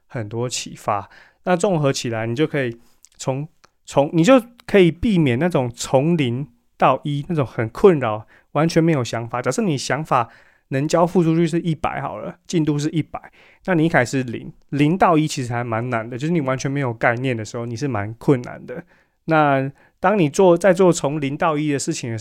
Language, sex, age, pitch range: Chinese, male, 20-39, 120-160 Hz